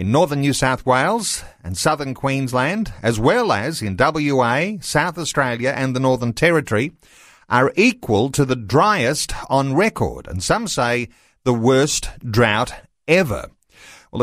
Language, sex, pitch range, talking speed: English, male, 120-160 Hz, 145 wpm